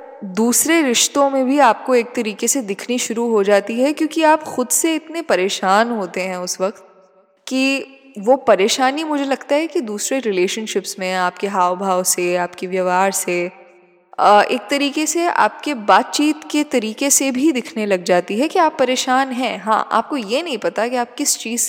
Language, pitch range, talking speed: Hindi, 195-280 Hz, 185 wpm